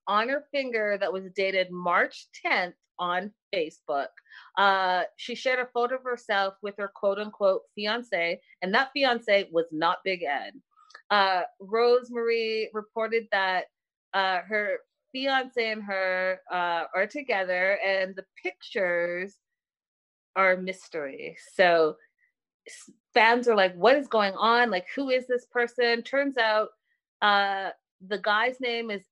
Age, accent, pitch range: 30-49, American, 185-245 Hz